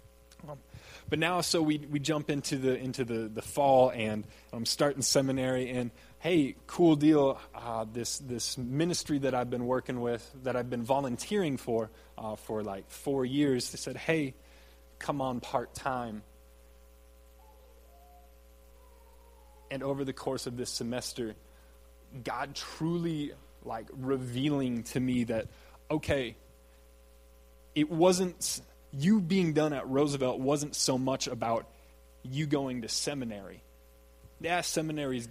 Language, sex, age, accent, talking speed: English, male, 20-39, American, 135 wpm